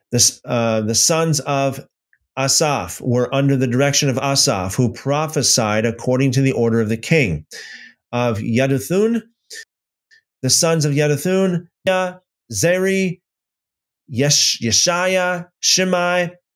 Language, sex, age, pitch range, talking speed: English, male, 30-49, 130-185 Hz, 110 wpm